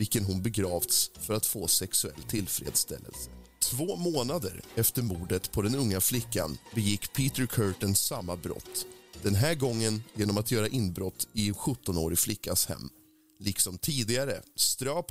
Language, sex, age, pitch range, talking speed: Swedish, male, 30-49, 95-125 Hz, 140 wpm